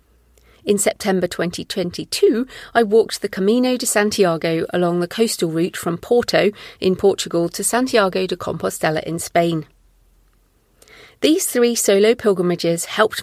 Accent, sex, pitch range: British, female, 175-225 Hz